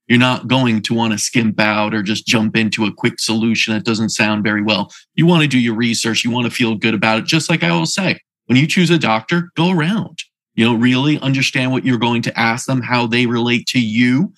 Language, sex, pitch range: English, male, 115-150 Hz